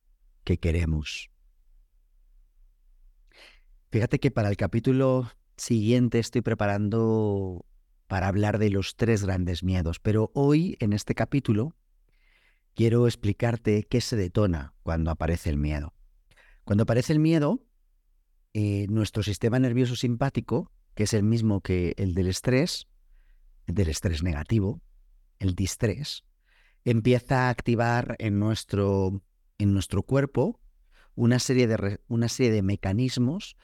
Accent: Spanish